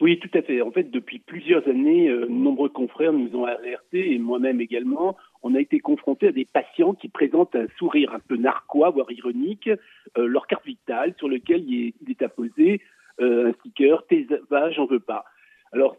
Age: 60-79